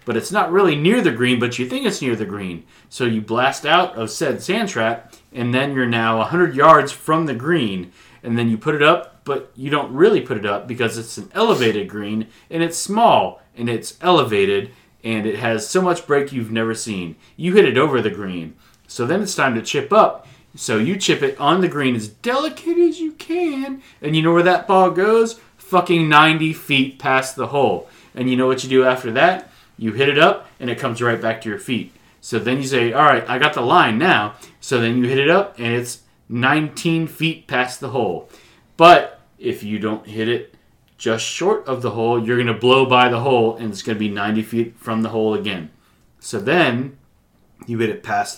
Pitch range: 110-160 Hz